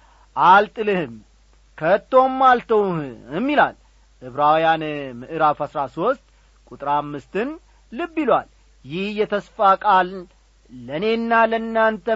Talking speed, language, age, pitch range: 80 wpm, Amharic, 40-59, 160-225 Hz